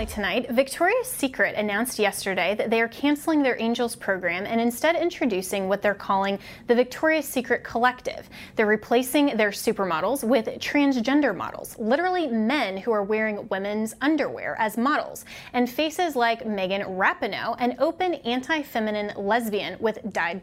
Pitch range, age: 215-290 Hz, 20-39